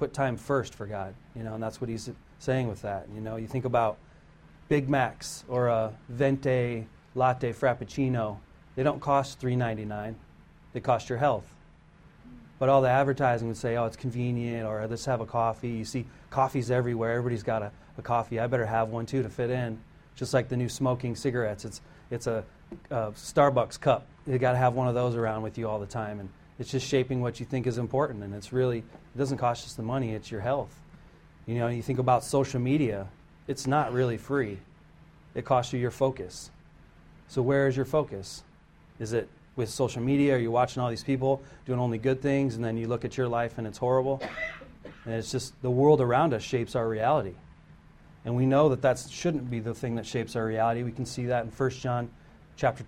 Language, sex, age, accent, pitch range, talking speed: English, male, 30-49, American, 115-135 Hz, 215 wpm